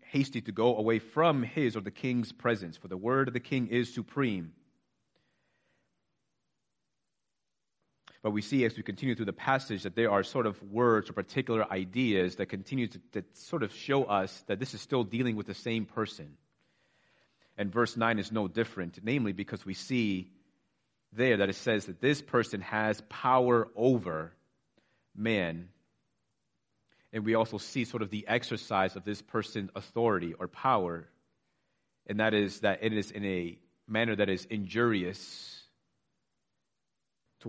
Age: 30-49